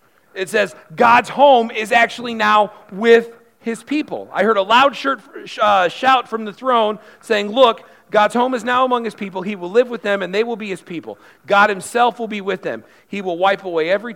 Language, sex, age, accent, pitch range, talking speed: English, male, 40-59, American, 145-200 Hz, 210 wpm